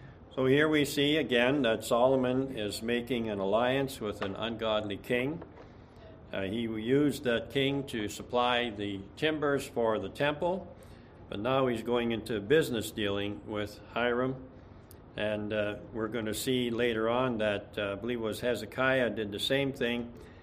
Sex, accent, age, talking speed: male, American, 60-79, 160 wpm